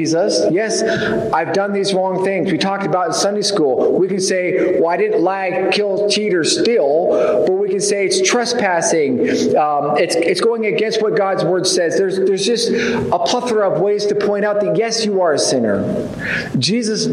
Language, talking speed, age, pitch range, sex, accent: English, 200 wpm, 40-59, 155-195 Hz, male, American